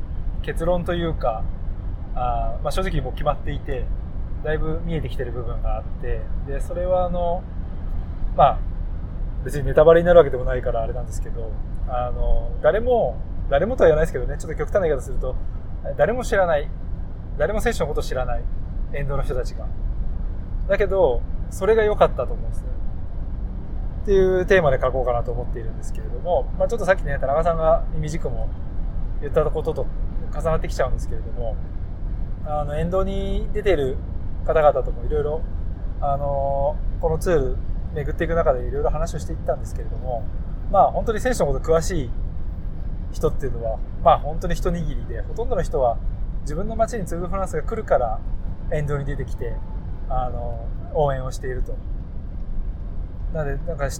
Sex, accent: male, native